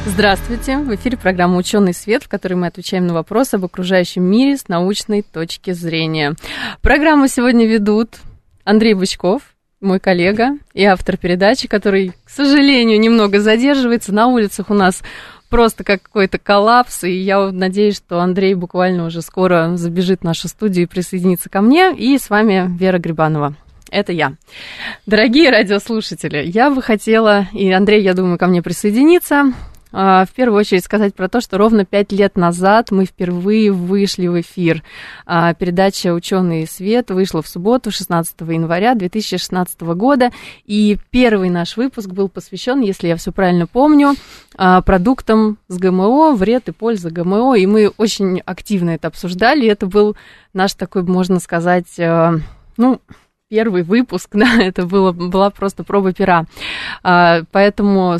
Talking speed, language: 150 wpm, Russian